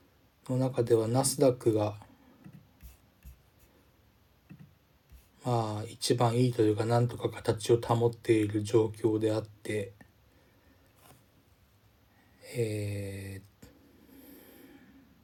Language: Japanese